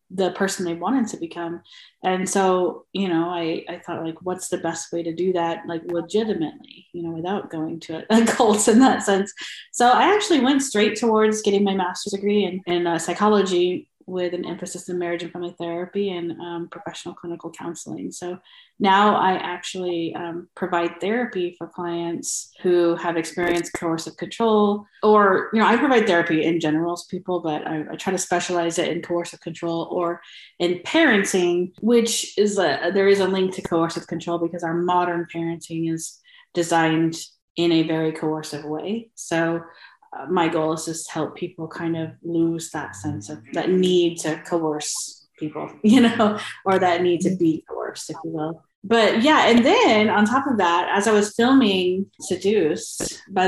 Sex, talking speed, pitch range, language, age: female, 180 wpm, 170-200 Hz, English, 30-49